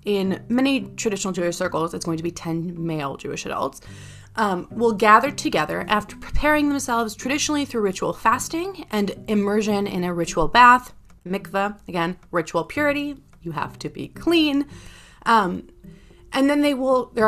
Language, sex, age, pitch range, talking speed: English, female, 20-39, 170-230 Hz, 155 wpm